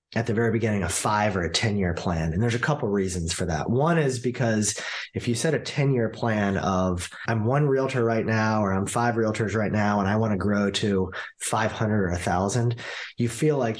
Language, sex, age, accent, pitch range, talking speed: English, male, 30-49, American, 100-125 Hz, 220 wpm